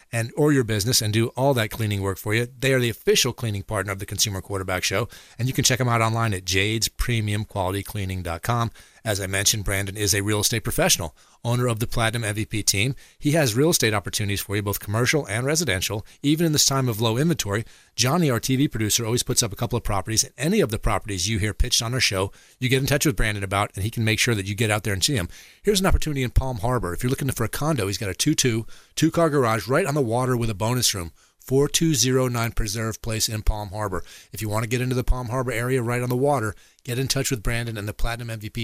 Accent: American